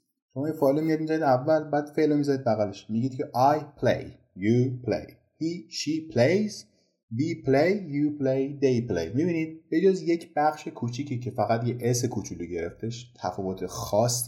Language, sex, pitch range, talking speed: Persian, male, 100-135 Hz, 155 wpm